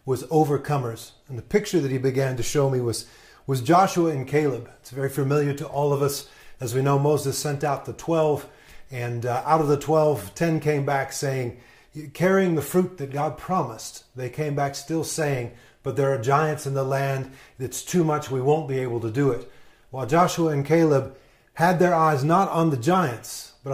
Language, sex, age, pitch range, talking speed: English, male, 40-59, 130-160 Hz, 205 wpm